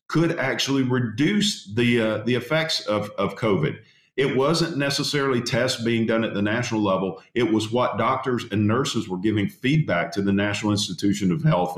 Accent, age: American, 50-69